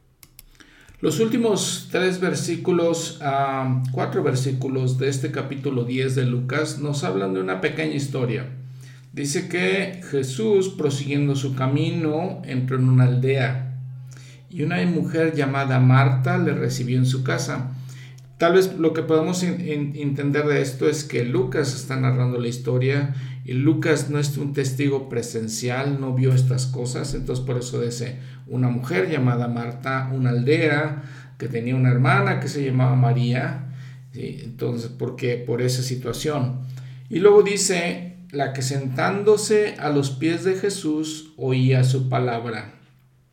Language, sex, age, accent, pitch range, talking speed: Spanish, male, 50-69, Mexican, 130-150 Hz, 145 wpm